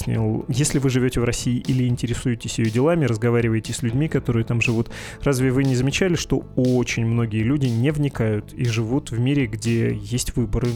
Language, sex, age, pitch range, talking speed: Russian, male, 20-39, 115-130 Hz, 180 wpm